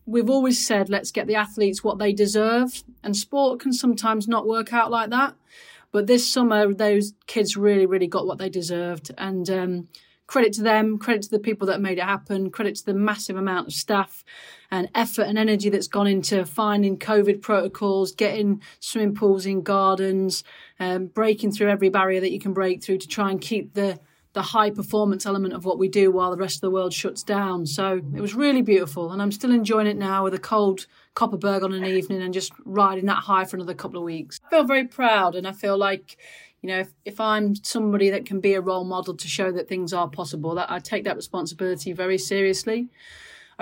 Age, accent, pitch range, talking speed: 30-49, British, 185-215 Hz, 215 wpm